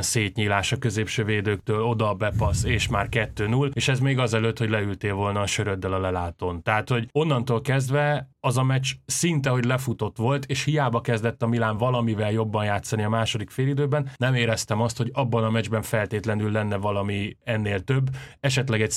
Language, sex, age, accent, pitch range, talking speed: English, male, 20-39, Finnish, 105-130 Hz, 180 wpm